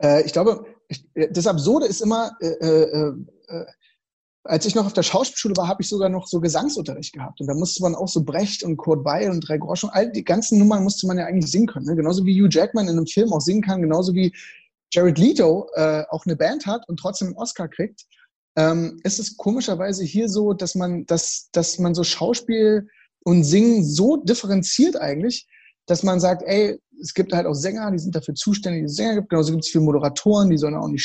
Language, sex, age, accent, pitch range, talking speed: German, male, 30-49, German, 165-210 Hz, 225 wpm